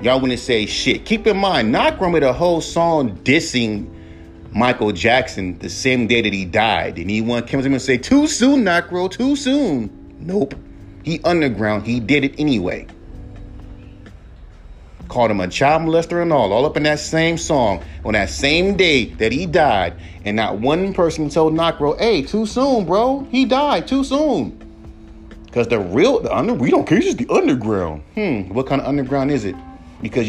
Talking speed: 185 wpm